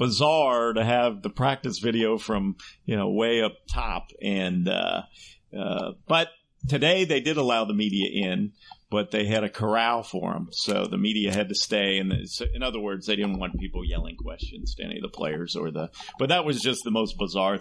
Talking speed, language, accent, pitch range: 210 wpm, English, American, 95-115 Hz